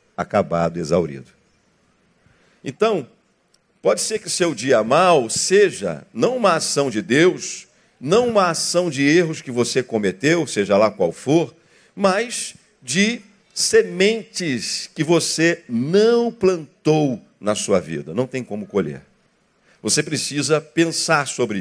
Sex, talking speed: male, 125 wpm